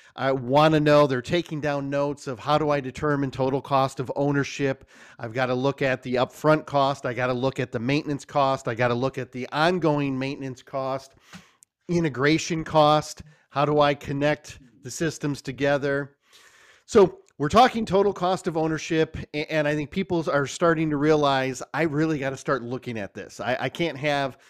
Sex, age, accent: male, 40-59, American